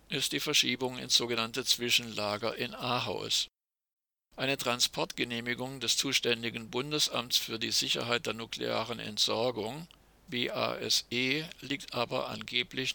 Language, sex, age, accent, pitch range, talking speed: German, male, 50-69, German, 115-135 Hz, 105 wpm